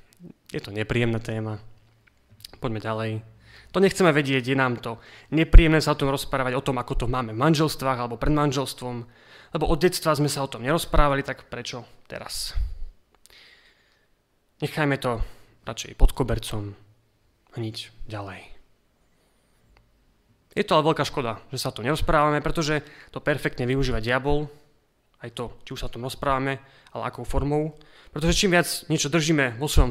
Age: 30-49